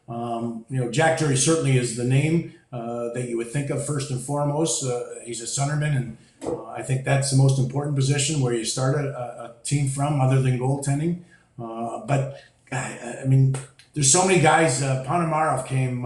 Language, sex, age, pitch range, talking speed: English, male, 40-59, 125-150 Hz, 195 wpm